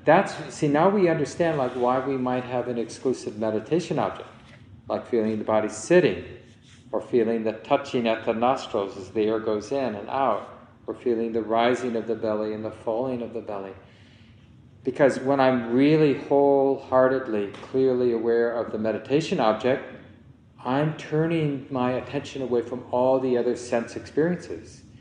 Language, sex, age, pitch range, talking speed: English, male, 40-59, 115-130 Hz, 165 wpm